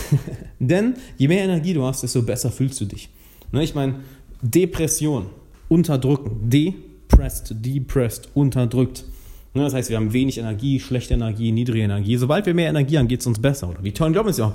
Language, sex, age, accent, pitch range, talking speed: German, male, 30-49, German, 110-145 Hz, 185 wpm